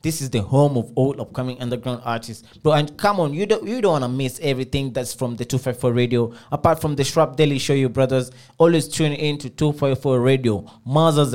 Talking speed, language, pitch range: 210 wpm, English, 120-145 Hz